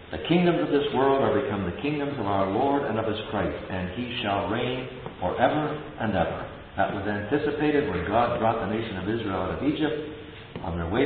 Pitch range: 90-120 Hz